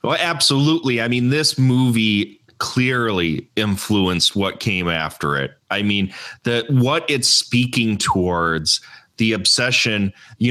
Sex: male